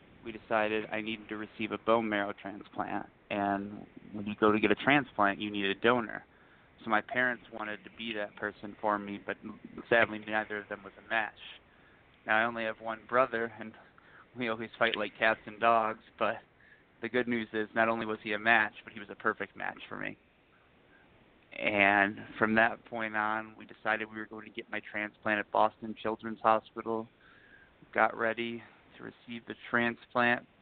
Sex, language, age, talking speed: male, English, 20-39, 190 wpm